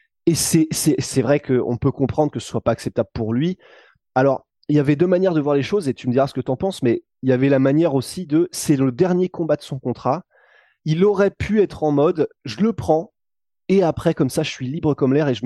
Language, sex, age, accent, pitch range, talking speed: French, male, 20-39, French, 125-165 Hz, 270 wpm